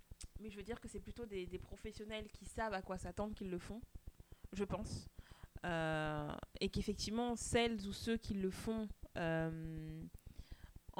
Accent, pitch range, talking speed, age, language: French, 165-200 Hz, 165 wpm, 20-39, French